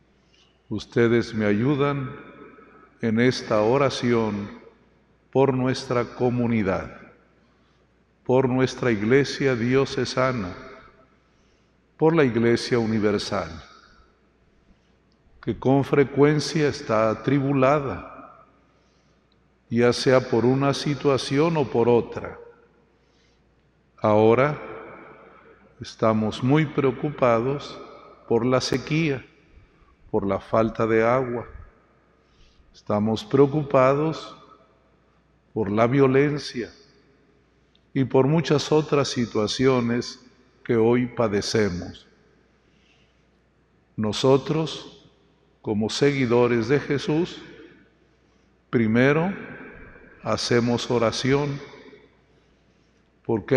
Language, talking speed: Spanish, 70 wpm